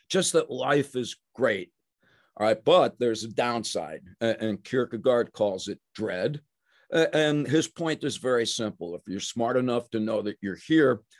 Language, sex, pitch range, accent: English, male, 110-145 Hz, American